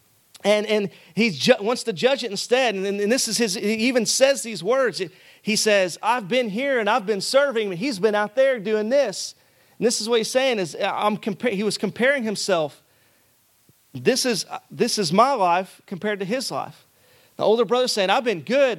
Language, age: English, 40-59